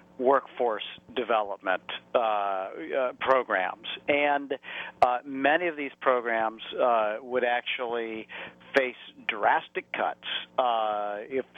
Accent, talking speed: American, 100 wpm